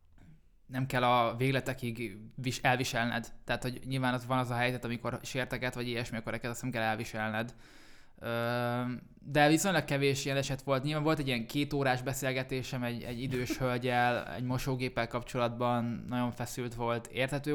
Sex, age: male, 20-39